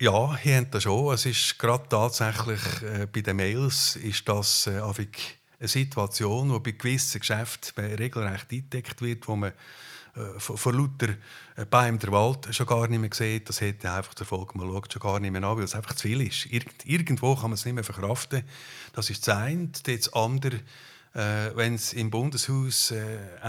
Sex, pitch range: male, 105-125 Hz